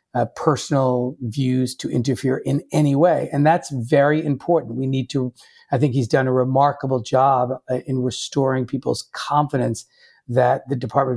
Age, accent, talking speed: 50-69, American, 160 wpm